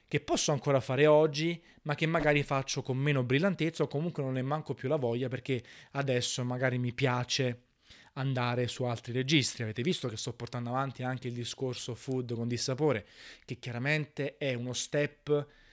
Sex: male